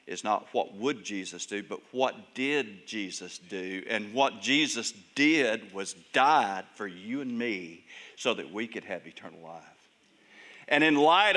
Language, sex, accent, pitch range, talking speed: English, male, American, 125-210 Hz, 165 wpm